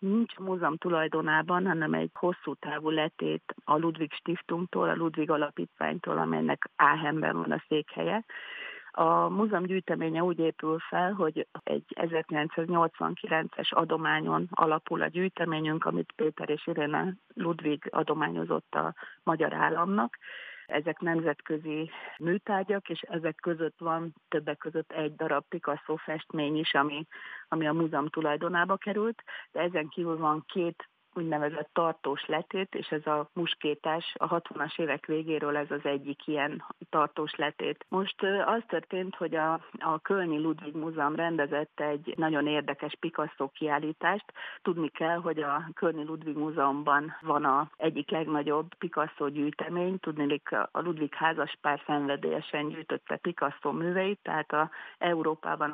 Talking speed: 130 wpm